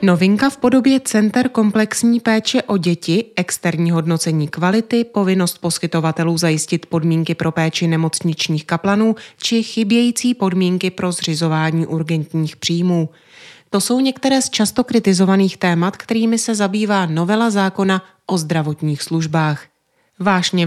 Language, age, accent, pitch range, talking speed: Czech, 30-49, native, 170-220 Hz, 120 wpm